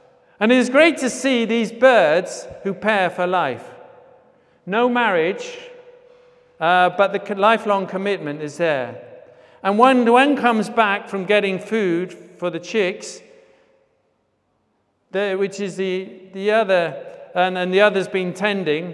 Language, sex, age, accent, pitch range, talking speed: English, male, 50-69, British, 140-200 Hz, 145 wpm